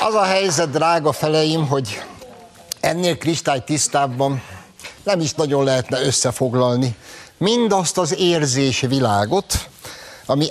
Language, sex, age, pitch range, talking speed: Hungarian, male, 60-79, 100-130 Hz, 110 wpm